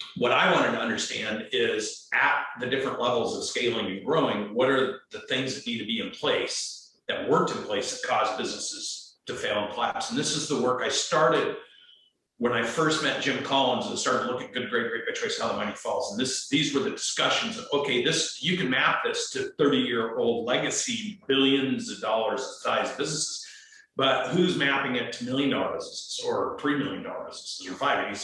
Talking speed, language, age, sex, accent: 210 wpm, English, 50-69, male, American